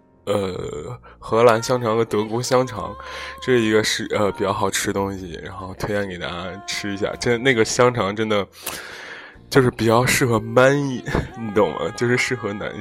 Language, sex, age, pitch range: Chinese, male, 20-39, 105-125 Hz